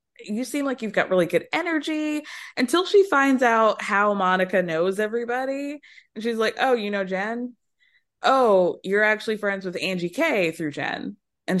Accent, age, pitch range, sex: American, 20-39, 180-270 Hz, female